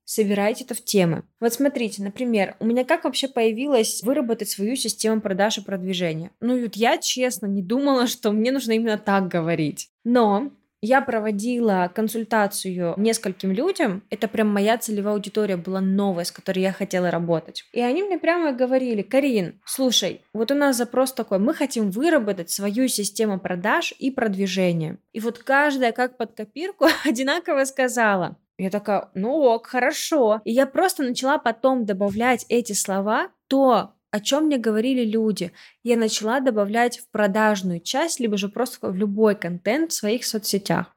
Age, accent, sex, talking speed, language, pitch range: 20-39, native, female, 160 wpm, Russian, 205-260 Hz